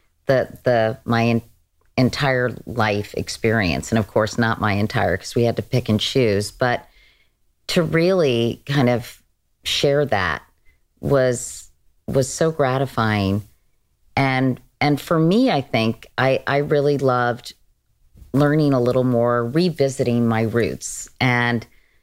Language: English